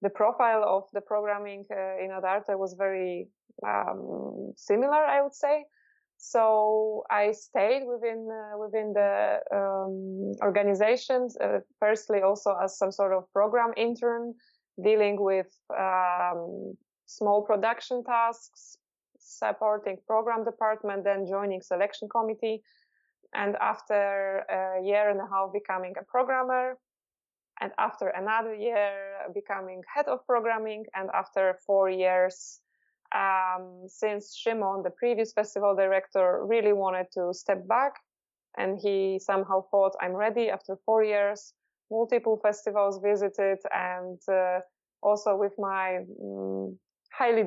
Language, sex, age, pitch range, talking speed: English, female, 20-39, 190-225 Hz, 125 wpm